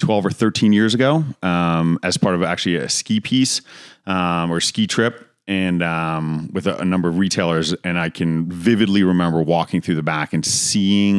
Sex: male